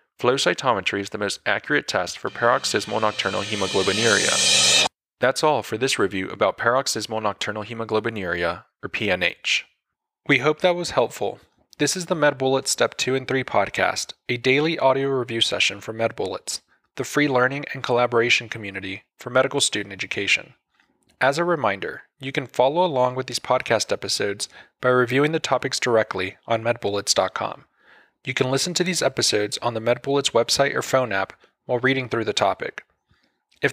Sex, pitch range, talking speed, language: male, 115-145 Hz, 160 wpm, English